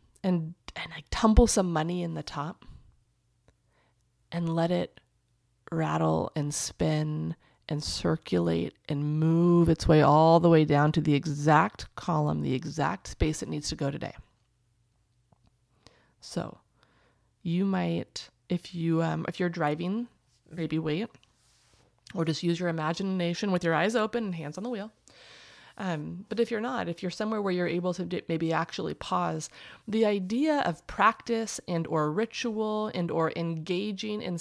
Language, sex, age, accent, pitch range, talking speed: English, female, 30-49, American, 150-190 Hz, 155 wpm